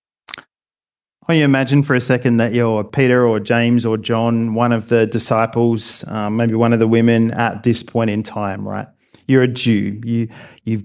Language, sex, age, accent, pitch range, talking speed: English, male, 40-59, Australian, 115-140 Hz, 185 wpm